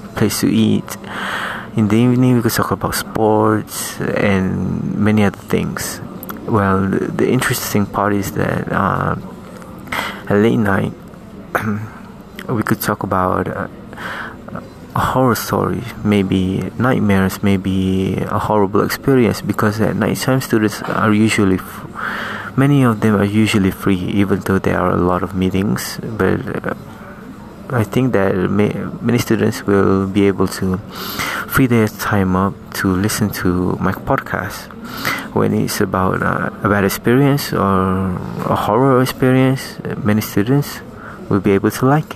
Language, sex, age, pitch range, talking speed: English, male, 20-39, 95-120 Hz, 140 wpm